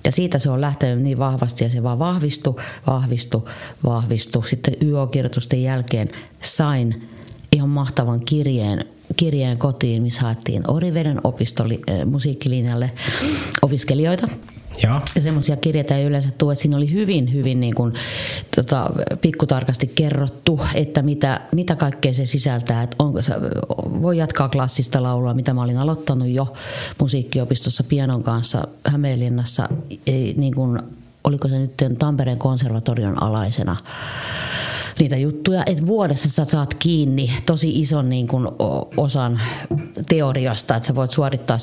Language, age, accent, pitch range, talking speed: Finnish, 30-49, native, 120-145 Hz, 125 wpm